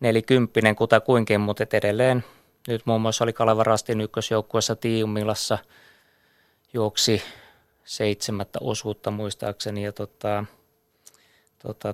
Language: Finnish